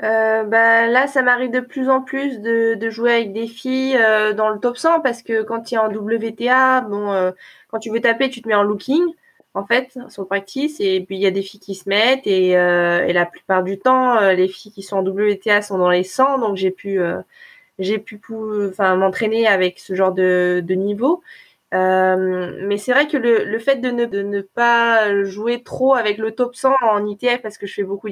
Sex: female